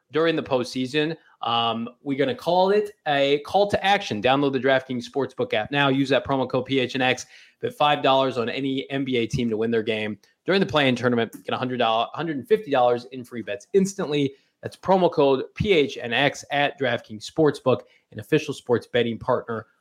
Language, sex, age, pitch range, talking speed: English, male, 20-39, 115-140 Hz, 170 wpm